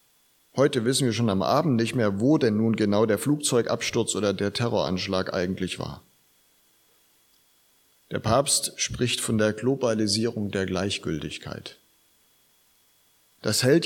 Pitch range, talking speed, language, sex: 105-140 Hz, 125 wpm, German, male